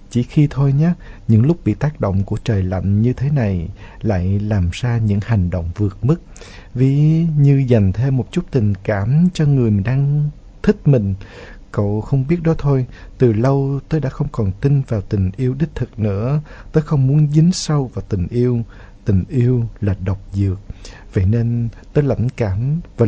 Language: Vietnamese